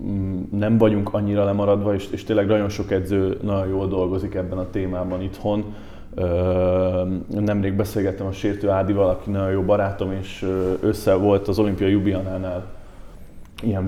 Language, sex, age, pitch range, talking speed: Hungarian, male, 20-39, 95-110 Hz, 140 wpm